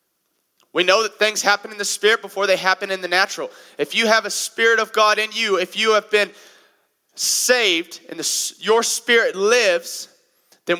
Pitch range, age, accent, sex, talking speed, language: 160-210 Hz, 30-49, American, male, 190 wpm, English